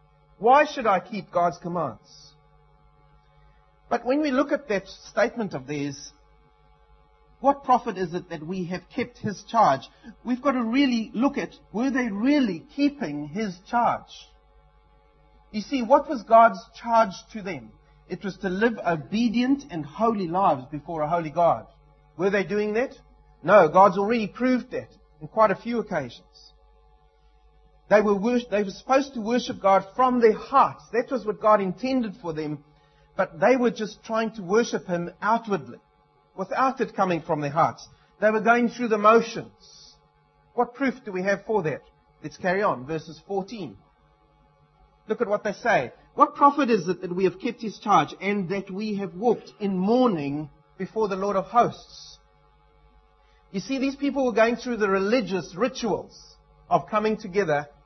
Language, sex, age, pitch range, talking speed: English, male, 40-59, 175-235 Hz, 170 wpm